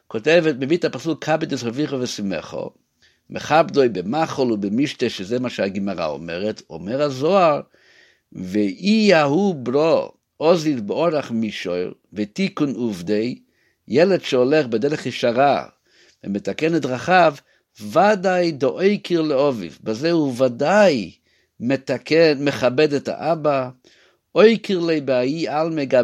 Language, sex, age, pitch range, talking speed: Hebrew, male, 60-79, 125-180 Hz, 105 wpm